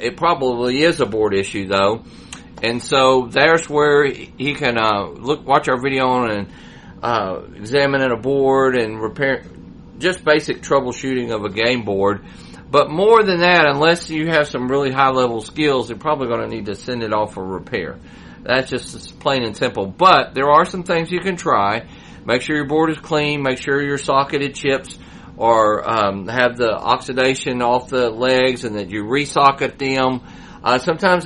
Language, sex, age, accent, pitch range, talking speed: English, male, 40-59, American, 115-150 Hz, 180 wpm